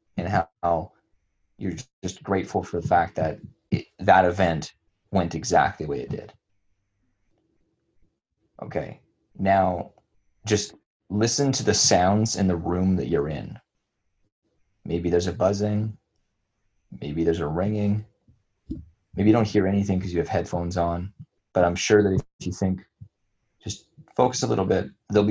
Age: 20-39